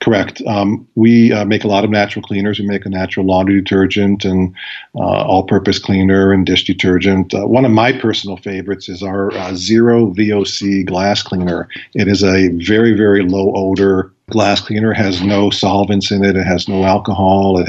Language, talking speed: English, 185 wpm